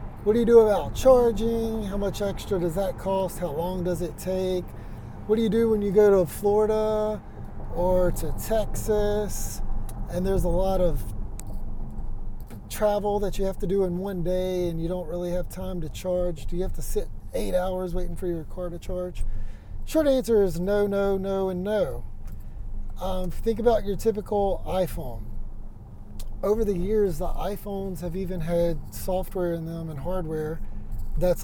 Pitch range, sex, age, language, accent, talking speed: 160-200 Hz, male, 30-49, English, American, 175 wpm